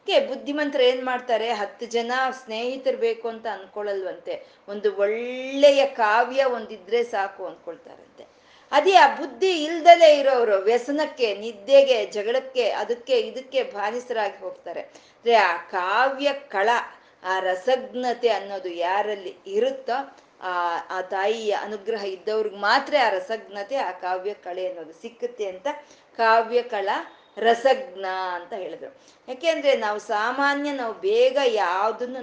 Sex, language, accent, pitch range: female, Kannada, native, 205-285 Hz